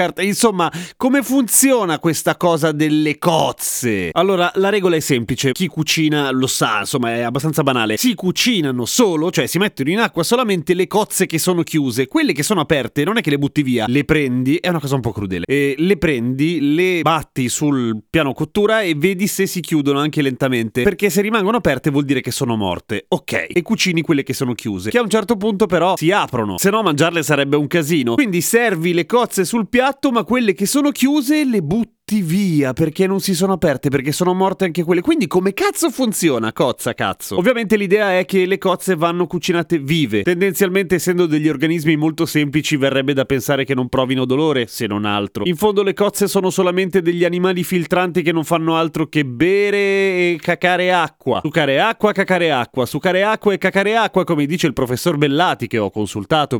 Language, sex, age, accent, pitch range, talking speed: Italian, male, 30-49, native, 145-195 Hz, 200 wpm